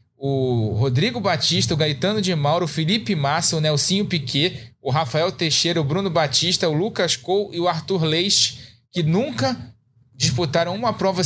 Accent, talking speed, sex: Brazilian, 165 wpm, male